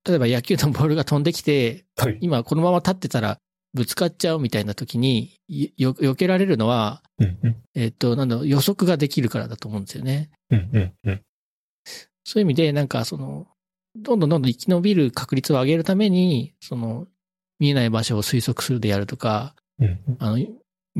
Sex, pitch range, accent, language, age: male, 120-185 Hz, native, Japanese, 40-59